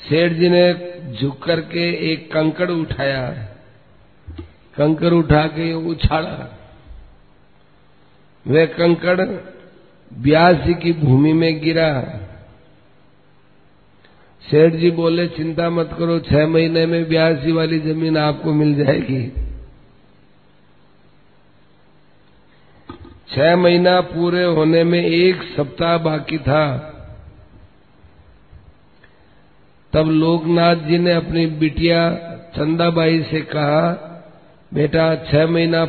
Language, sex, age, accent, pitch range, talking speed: Hindi, male, 50-69, native, 150-170 Hz, 90 wpm